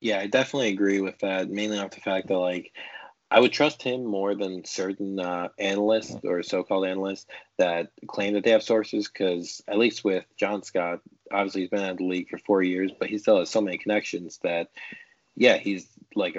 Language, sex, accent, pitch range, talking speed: English, male, American, 85-100 Hz, 205 wpm